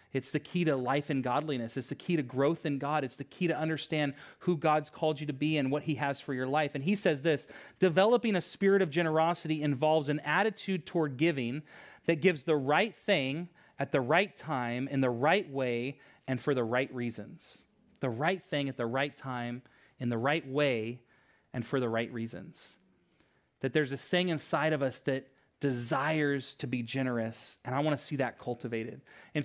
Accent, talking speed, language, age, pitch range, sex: American, 205 wpm, English, 30-49, 130-165 Hz, male